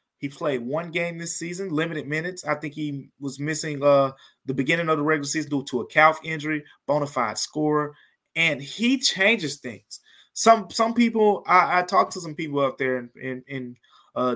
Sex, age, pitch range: male, 20-39, 140-185 Hz